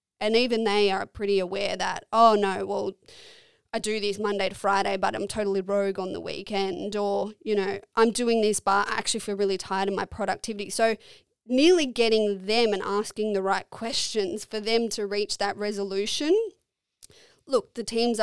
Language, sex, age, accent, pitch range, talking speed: English, female, 20-39, Australian, 200-230 Hz, 185 wpm